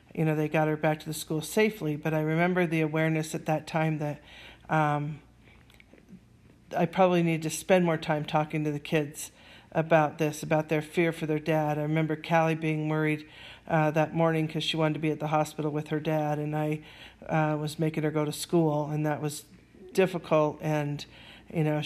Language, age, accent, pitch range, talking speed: English, 50-69, American, 150-165 Hz, 205 wpm